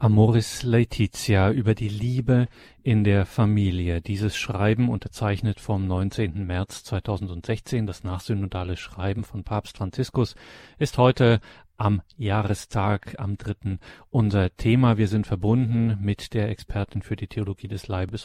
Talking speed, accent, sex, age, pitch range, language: 130 wpm, German, male, 40-59, 105-130 Hz, German